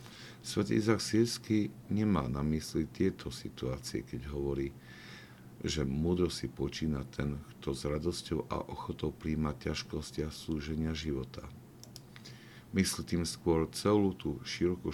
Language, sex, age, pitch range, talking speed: Slovak, male, 50-69, 70-90 Hz, 125 wpm